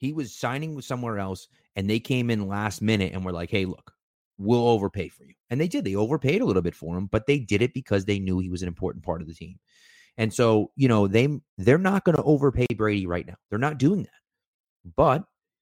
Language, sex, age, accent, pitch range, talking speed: English, male, 30-49, American, 95-125 Hz, 245 wpm